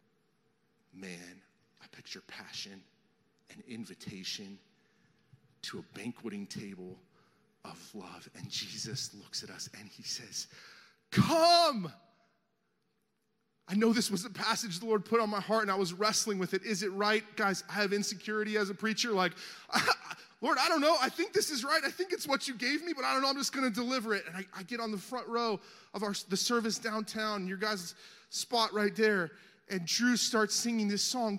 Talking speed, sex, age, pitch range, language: 190 wpm, male, 30-49, 205-250 Hz, English